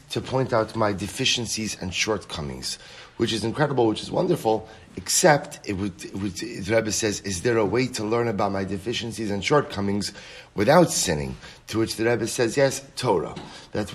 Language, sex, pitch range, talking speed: English, male, 95-120 Hz, 180 wpm